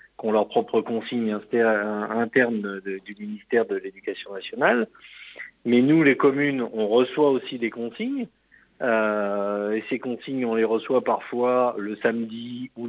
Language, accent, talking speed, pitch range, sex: French, French, 145 wpm, 105-125 Hz, male